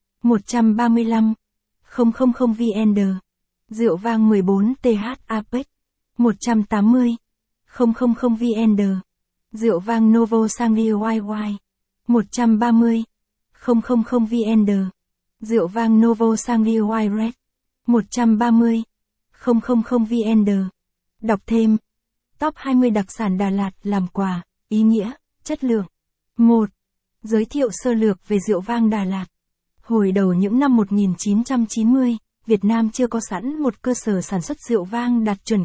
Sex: female